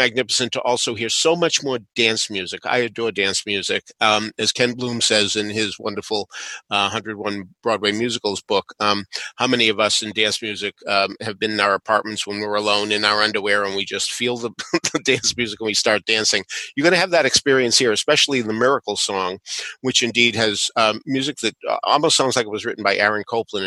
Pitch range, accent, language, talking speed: 105-120 Hz, American, English, 215 wpm